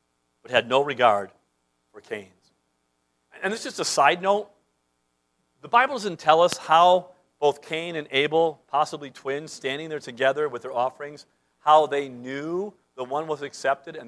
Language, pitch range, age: English, 120-180 Hz, 50-69